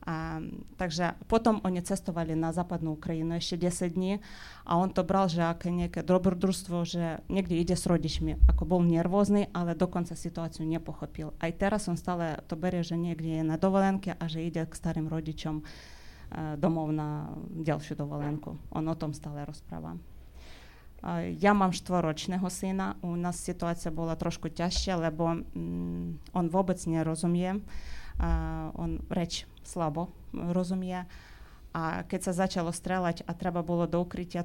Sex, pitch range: female, 160-180 Hz